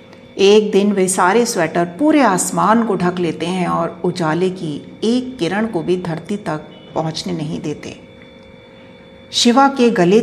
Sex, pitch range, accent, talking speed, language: female, 165-215 Hz, native, 155 wpm, Hindi